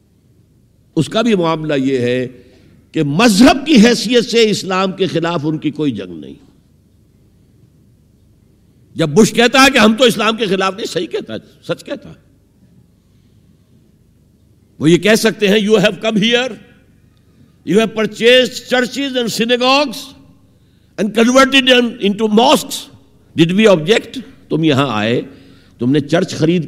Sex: male